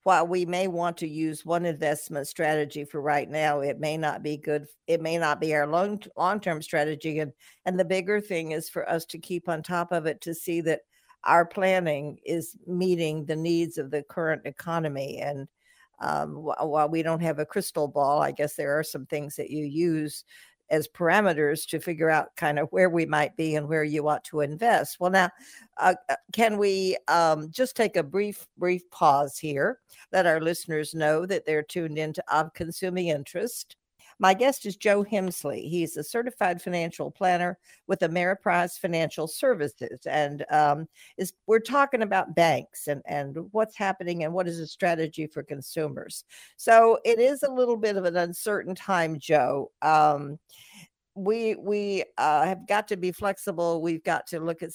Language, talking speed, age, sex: English, 185 wpm, 60-79, female